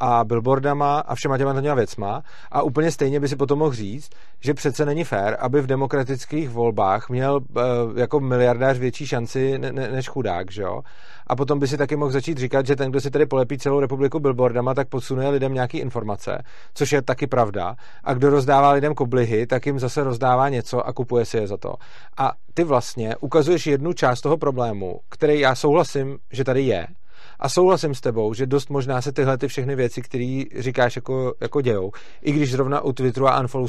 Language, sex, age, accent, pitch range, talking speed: Czech, male, 40-59, native, 125-145 Hz, 210 wpm